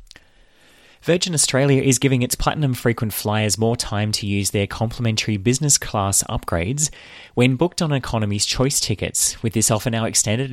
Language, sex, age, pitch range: English, male, 20-39, 95-120 Hz